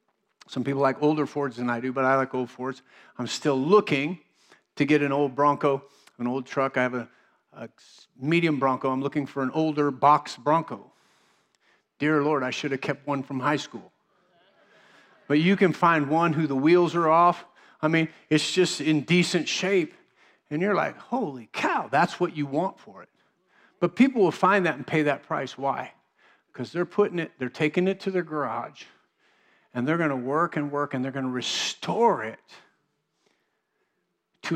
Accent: American